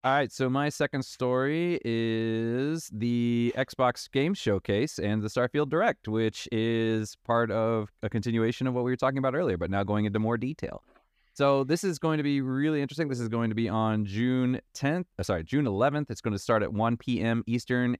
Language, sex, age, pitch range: English, male, 30-49, 110-145 Hz